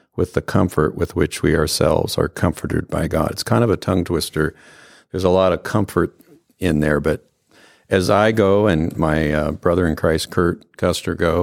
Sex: male